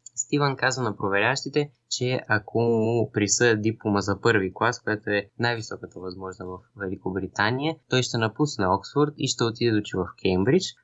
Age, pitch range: 20-39, 105-135 Hz